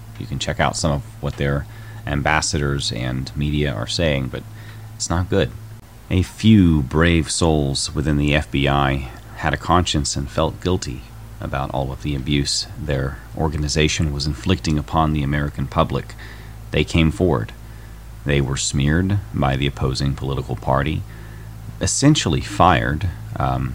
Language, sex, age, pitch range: English, male, 30-49, 70-110 Hz